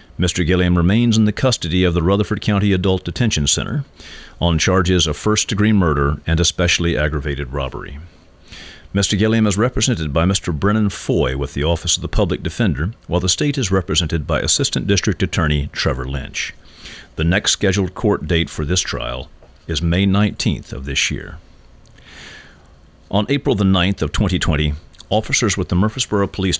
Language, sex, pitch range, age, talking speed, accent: English, male, 80-100 Hz, 50-69, 165 wpm, American